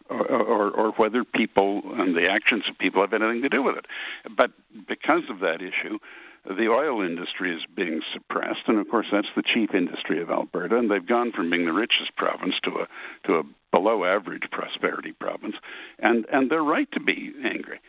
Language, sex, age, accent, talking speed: English, male, 60-79, American, 190 wpm